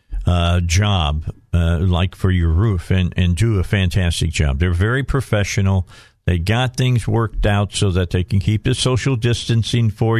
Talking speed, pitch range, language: 175 wpm, 100-120 Hz, English